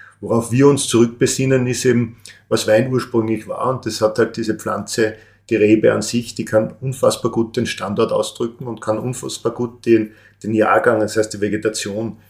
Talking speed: 185 wpm